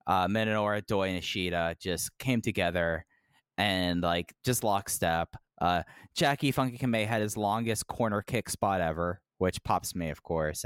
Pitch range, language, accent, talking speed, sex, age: 90-130 Hz, English, American, 160 wpm, male, 10-29